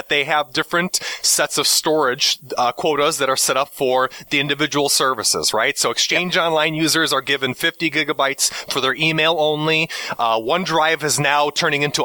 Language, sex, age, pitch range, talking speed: English, male, 30-49, 135-165 Hz, 175 wpm